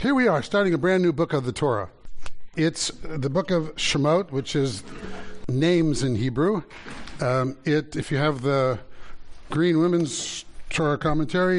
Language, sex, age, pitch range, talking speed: English, male, 60-79, 130-165 Hz, 160 wpm